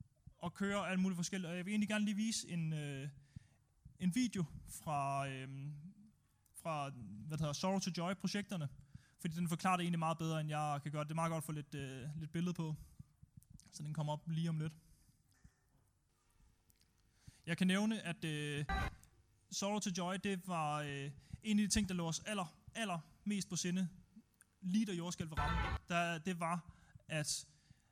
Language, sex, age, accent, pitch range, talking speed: Danish, male, 20-39, native, 150-180 Hz, 180 wpm